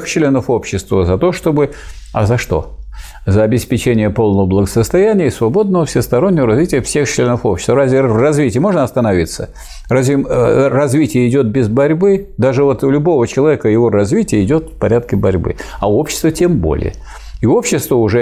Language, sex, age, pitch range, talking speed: Russian, male, 50-69, 100-130 Hz, 160 wpm